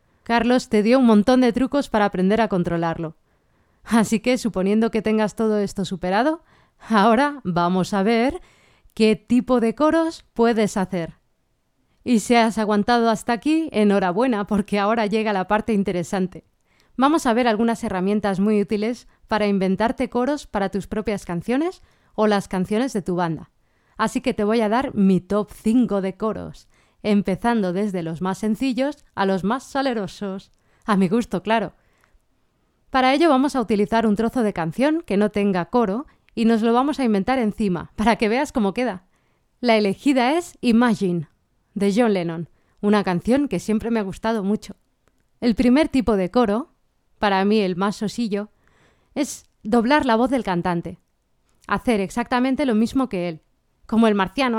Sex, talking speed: female, 165 wpm